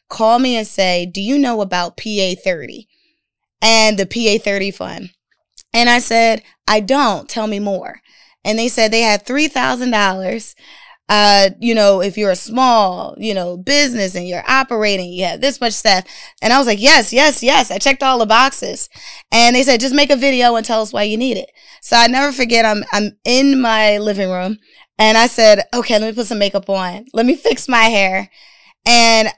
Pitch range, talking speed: 195-245 Hz, 200 wpm